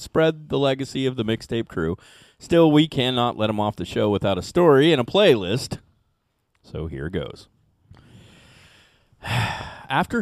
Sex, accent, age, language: male, American, 30-49, English